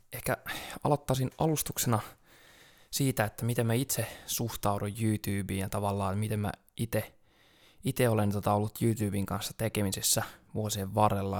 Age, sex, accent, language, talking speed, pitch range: 20-39, male, native, Finnish, 125 wpm, 100-115 Hz